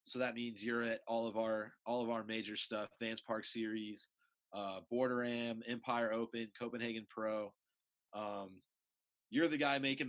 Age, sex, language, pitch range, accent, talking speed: 30-49, male, English, 110-130 Hz, American, 165 wpm